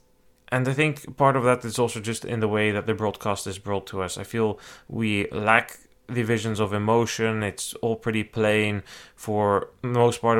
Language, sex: English, male